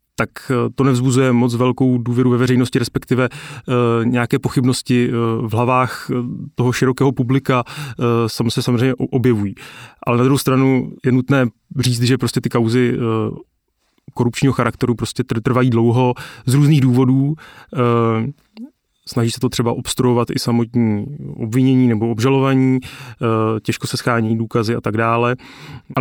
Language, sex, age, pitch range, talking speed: Czech, male, 30-49, 120-135 Hz, 130 wpm